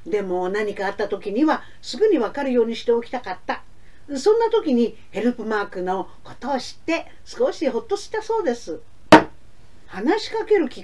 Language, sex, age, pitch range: Japanese, female, 50-69, 215-360 Hz